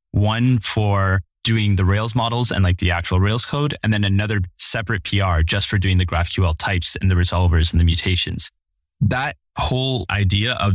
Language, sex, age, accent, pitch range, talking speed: English, male, 10-29, American, 90-110 Hz, 185 wpm